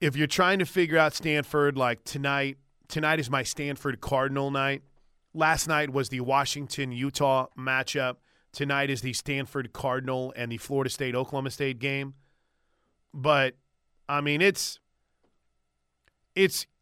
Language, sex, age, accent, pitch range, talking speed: English, male, 30-49, American, 130-155 Hz, 140 wpm